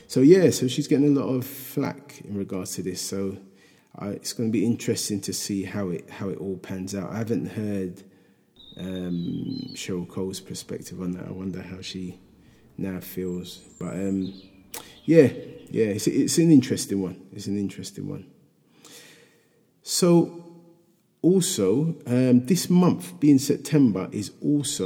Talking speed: 155 wpm